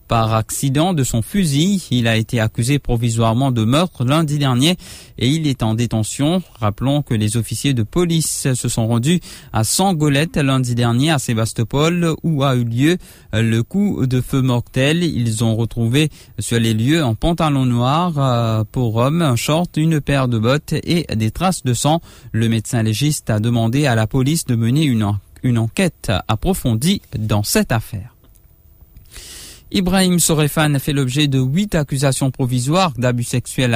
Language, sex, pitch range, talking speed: English, male, 115-150 Hz, 160 wpm